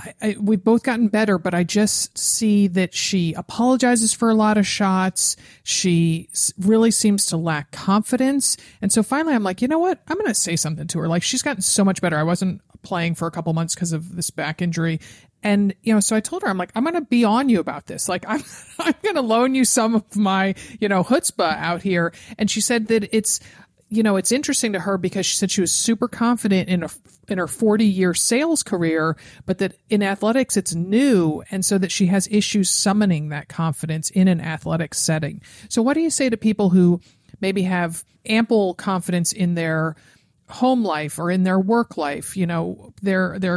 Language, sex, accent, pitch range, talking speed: English, male, American, 170-220 Hz, 220 wpm